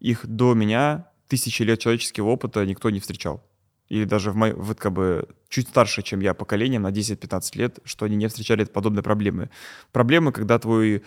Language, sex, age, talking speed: Russian, male, 20-39, 180 wpm